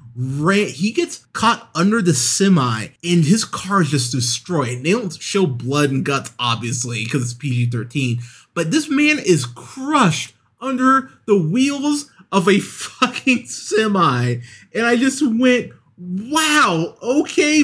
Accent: American